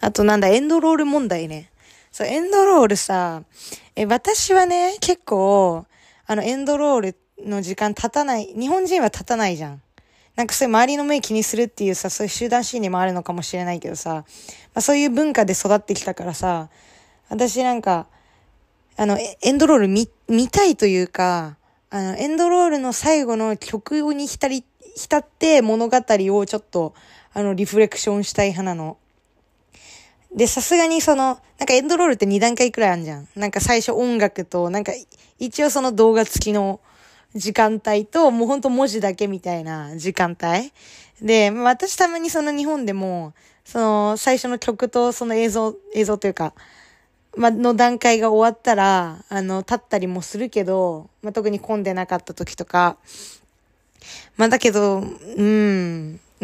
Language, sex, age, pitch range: Japanese, female, 20-39, 190-255 Hz